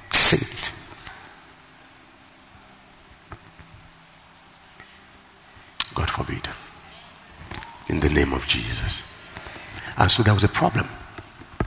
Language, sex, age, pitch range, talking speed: English, male, 60-79, 80-100 Hz, 70 wpm